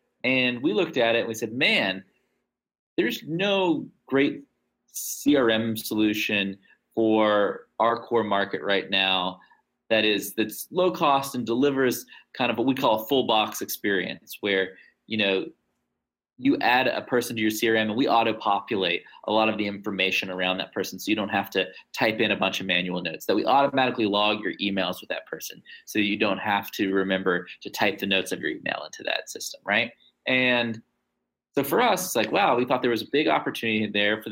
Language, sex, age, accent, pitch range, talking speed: English, male, 30-49, American, 105-125 Hz, 195 wpm